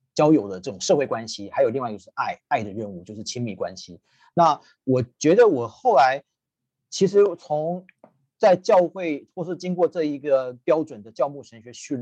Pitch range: 110-140 Hz